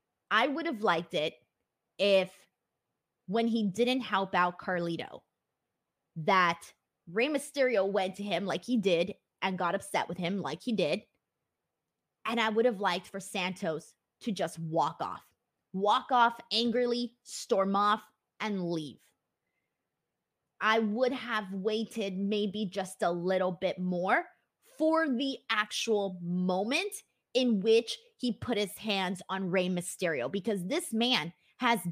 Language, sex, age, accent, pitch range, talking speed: English, female, 20-39, American, 185-245 Hz, 140 wpm